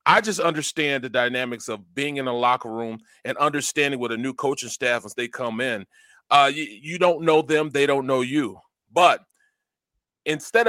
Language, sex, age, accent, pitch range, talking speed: English, male, 30-49, American, 130-175 Hz, 190 wpm